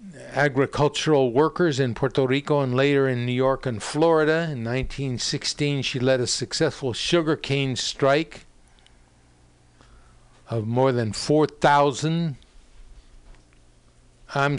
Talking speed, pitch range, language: 105 wpm, 85-140 Hz, English